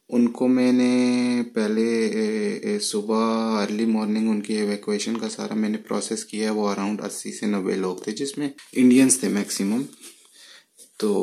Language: Urdu